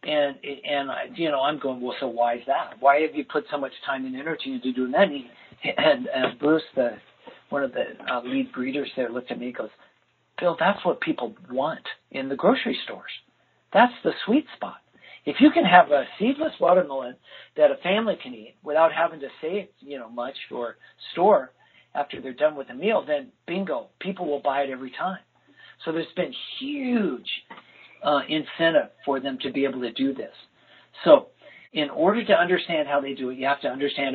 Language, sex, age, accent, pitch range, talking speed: English, male, 50-69, American, 135-185 Hz, 205 wpm